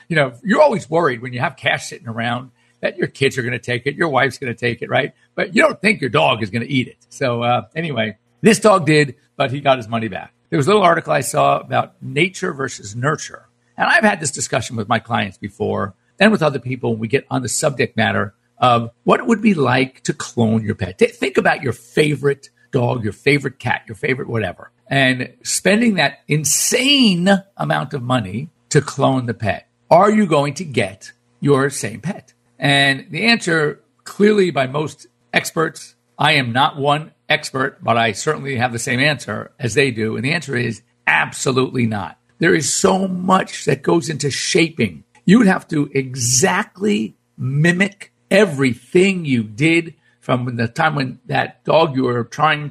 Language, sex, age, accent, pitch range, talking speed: English, male, 50-69, American, 120-160 Hz, 195 wpm